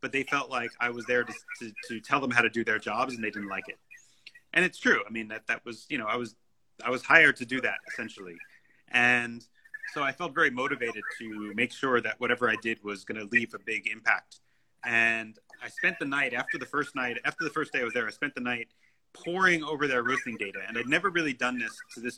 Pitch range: 115-145 Hz